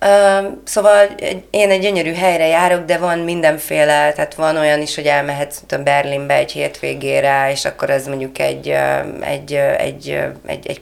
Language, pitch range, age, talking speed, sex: Hungarian, 145-180 Hz, 30-49, 145 wpm, female